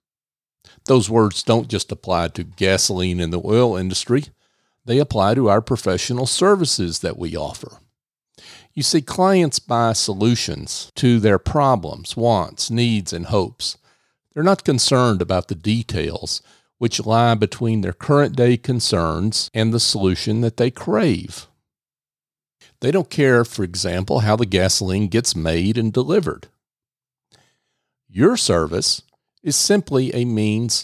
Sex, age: male, 50-69